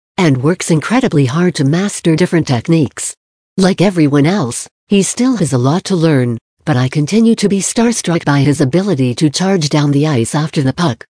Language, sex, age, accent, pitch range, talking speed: English, female, 60-79, American, 140-185 Hz, 190 wpm